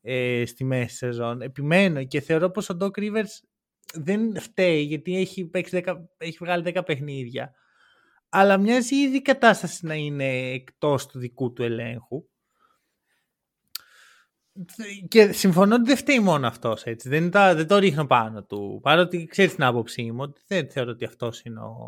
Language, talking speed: Greek, 145 wpm